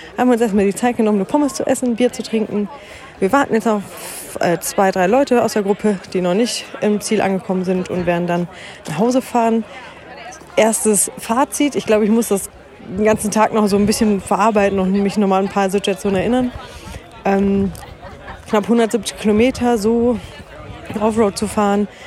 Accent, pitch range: German, 190-225 Hz